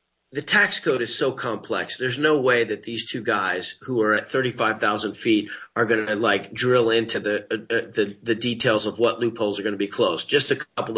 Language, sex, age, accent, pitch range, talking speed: English, male, 30-49, American, 110-140 Hz, 235 wpm